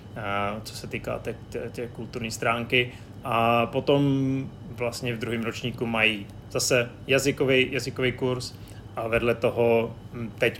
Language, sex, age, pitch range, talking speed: Czech, male, 30-49, 110-125 Hz, 120 wpm